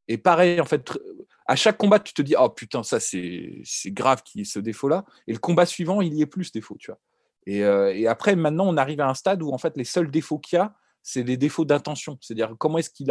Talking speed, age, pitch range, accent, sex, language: 270 wpm, 30-49, 125-165 Hz, French, male, French